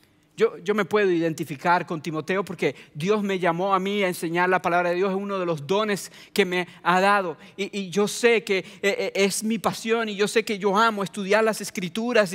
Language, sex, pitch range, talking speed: English, male, 180-220 Hz, 220 wpm